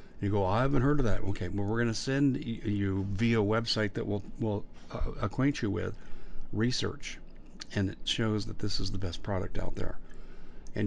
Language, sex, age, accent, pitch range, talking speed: English, male, 50-69, American, 95-105 Hz, 195 wpm